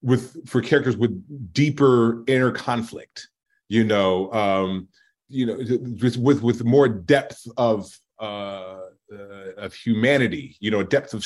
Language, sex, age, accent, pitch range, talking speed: English, male, 30-49, American, 115-150 Hz, 140 wpm